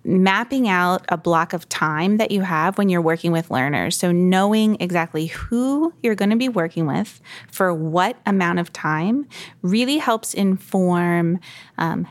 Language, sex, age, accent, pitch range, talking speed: English, female, 20-39, American, 170-200 Hz, 160 wpm